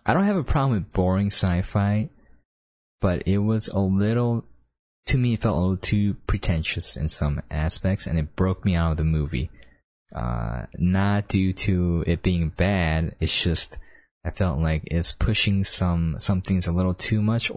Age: 20-39